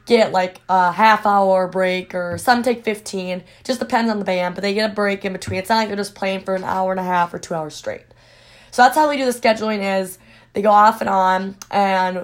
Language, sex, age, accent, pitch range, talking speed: English, female, 20-39, American, 185-220 Hz, 255 wpm